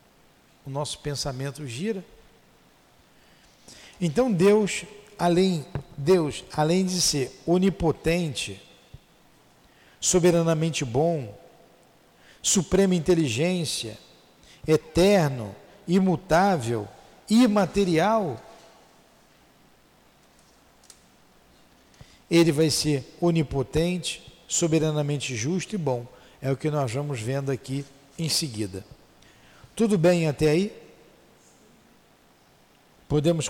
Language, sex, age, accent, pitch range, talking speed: Portuguese, male, 50-69, Brazilian, 145-185 Hz, 70 wpm